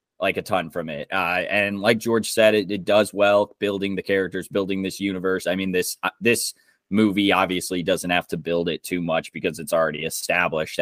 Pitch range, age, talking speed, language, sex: 90-110 Hz, 20-39, 210 wpm, English, male